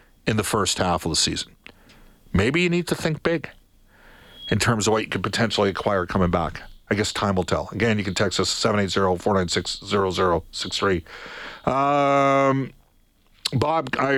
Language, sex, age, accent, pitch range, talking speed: English, male, 50-69, American, 100-135 Hz, 150 wpm